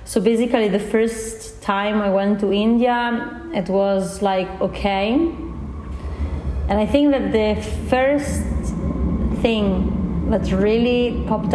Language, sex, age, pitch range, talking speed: Russian, female, 30-49, 190-225 Hz, 120 wpm